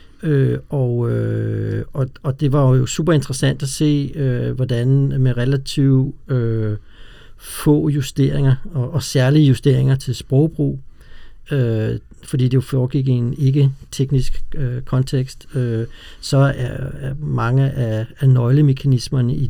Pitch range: 125-140 Hz